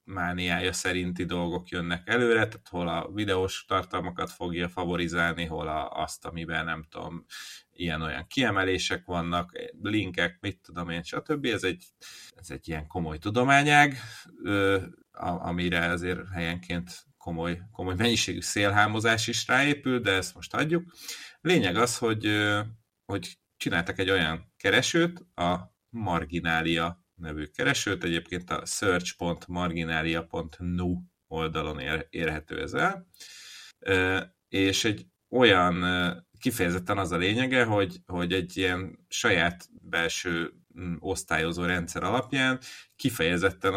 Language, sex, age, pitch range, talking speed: Hungarian, male, 30-49, 85-100 Hz, 115 wpm